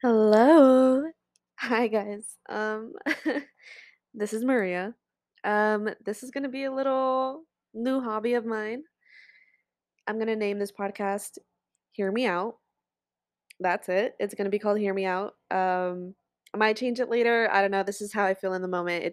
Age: 20-39